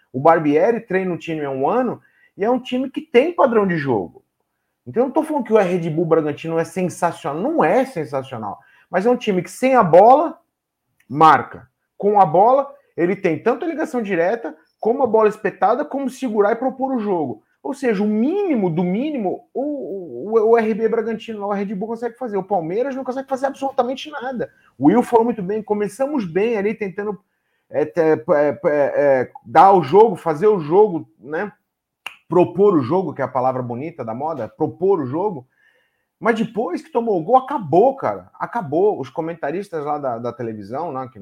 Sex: male